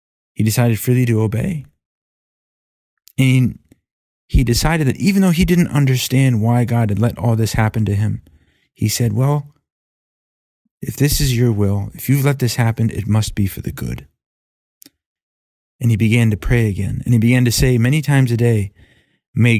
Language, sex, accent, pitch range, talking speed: English, male, American, 100-130 Hz, 180 wpm